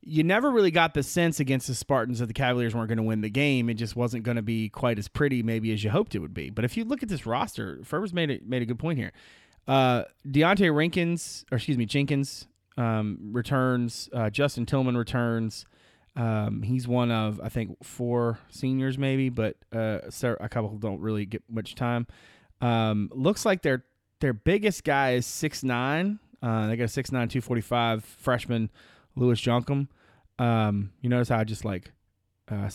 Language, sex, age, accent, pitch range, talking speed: English, male, 30-49, American, 110-140 Hz, 195 wpm